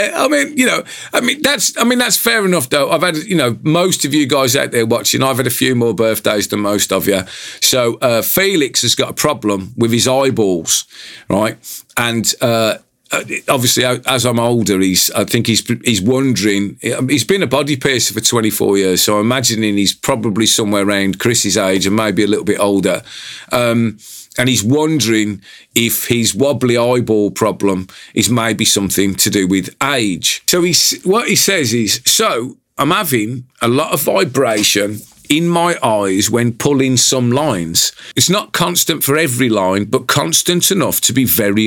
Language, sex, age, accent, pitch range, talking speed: English, male, 40-59, British, 105-140 Hz, 185 wpm